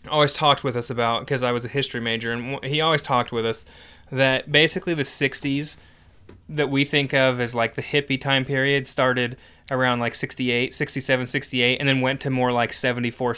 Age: 20-39